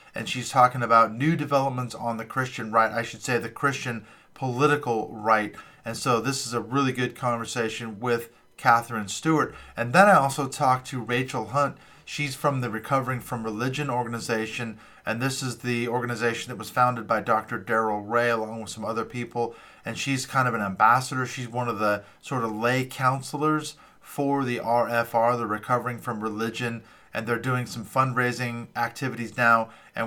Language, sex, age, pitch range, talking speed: English, male, 40-59, 115-130 Hz, 175 wpm